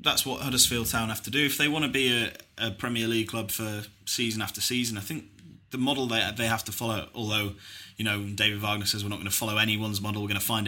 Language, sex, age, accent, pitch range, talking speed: English, male, 20-39, British, 105-120 Hz, 265 wpm